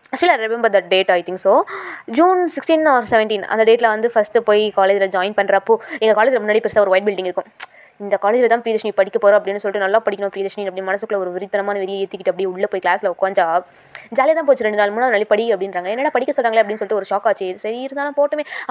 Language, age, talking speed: Tamil, 20-39, 210 wpm